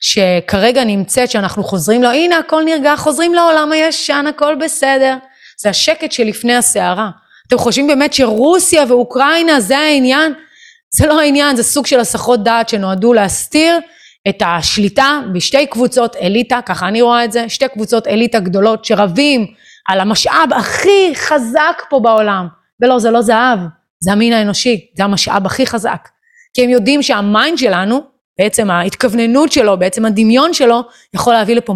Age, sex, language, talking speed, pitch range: 30-49, female, Hebrew, 150 wpm, 195-265 Hz